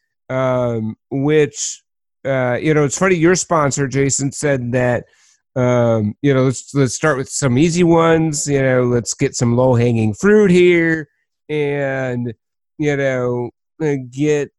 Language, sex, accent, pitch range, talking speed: English, male, American, 120-145 Hz, 145 wpm